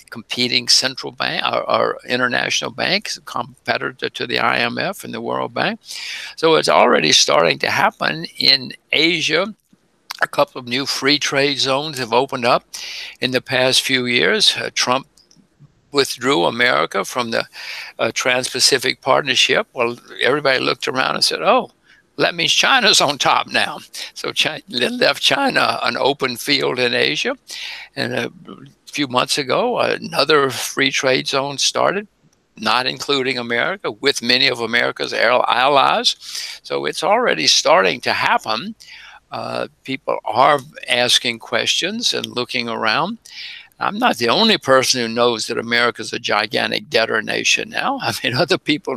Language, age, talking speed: English, 60-79, 145 wpm